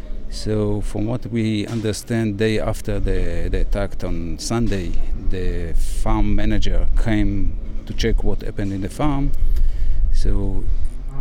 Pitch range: 85-110 Hz